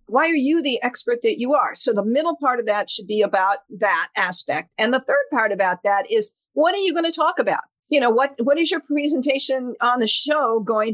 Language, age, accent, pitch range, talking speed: English, 50-69, American, 210-295 Hz, 240 wpm